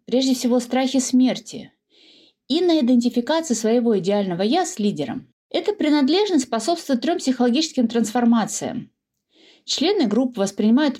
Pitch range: 210-265 Hz